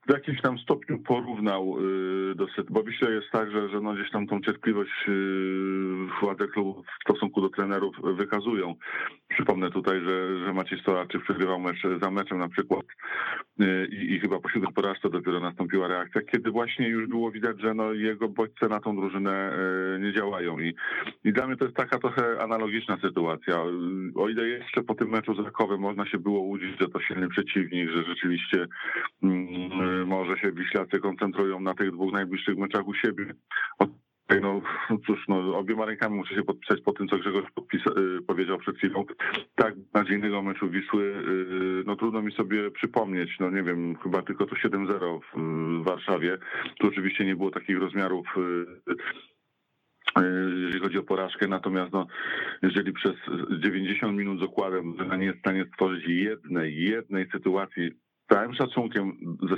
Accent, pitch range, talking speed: native, 95-105 Hz, 165 wpm